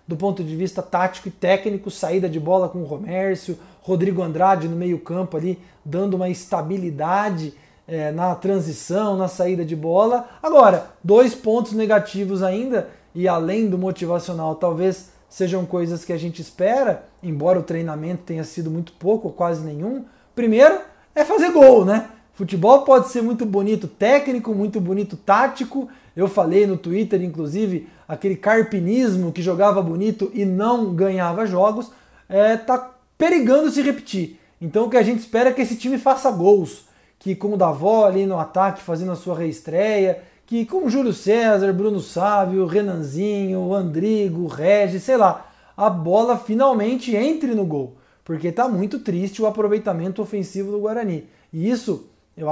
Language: Portuguese